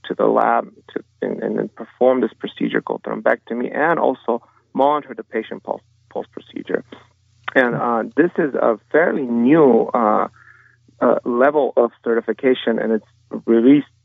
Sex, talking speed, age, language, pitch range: male, 145 wpm, 40-59, English, 115-135 Hz